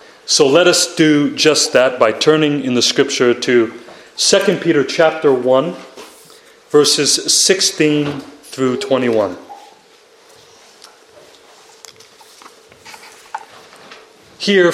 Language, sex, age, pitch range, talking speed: English, male, 30-49, 150-245 Hz, 85 wpm